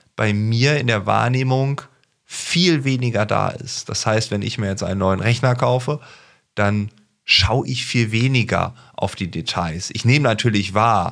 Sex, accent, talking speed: male, German, 165 wpm